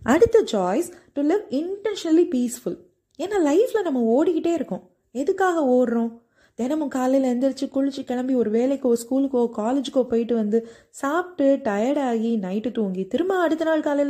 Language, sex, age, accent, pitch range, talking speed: Tamil, female, 20-39, native, 220-300 Hz, 125 wpm